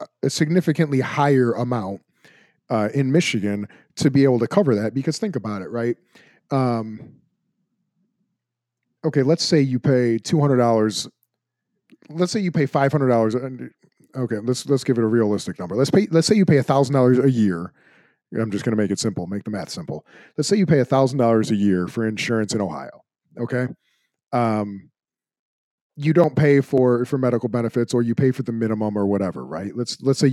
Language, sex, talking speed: English, male, 180 wpm